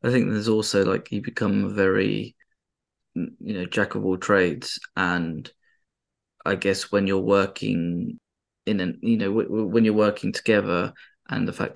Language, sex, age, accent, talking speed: English, male, 20-39, British, 175 wpm